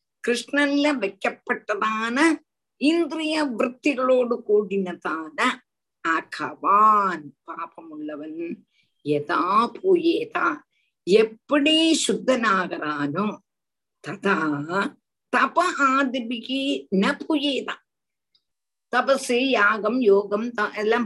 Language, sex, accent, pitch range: Tamil, female, native, 200-275 Hz